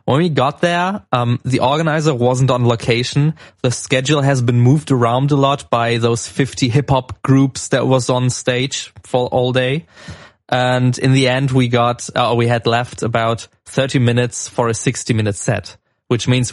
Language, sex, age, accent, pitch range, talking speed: English, male, 20-39, German, 115-135 Hz, 185 wpm